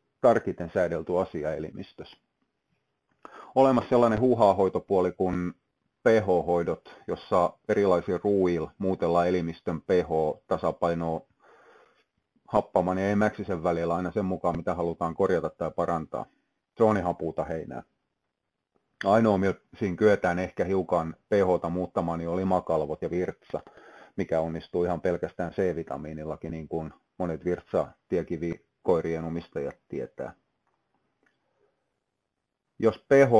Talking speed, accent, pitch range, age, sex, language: 105 wpm, native, 85-95 Hz, 30-49, male, Finnish